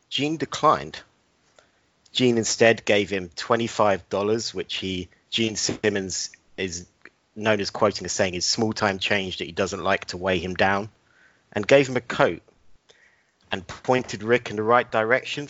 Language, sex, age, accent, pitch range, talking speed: English, male, 40-59, British, 95-120 Hz, 160 wpm